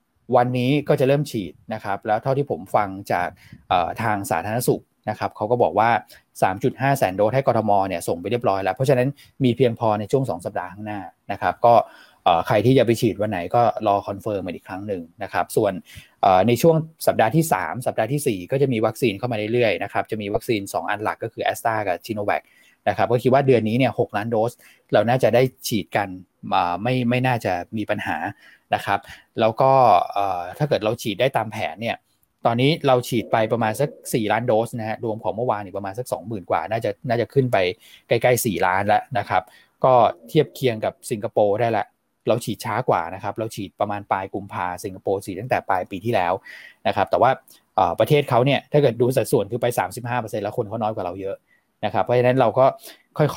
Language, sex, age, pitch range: Thai, male, 20-39, 105-130 Hz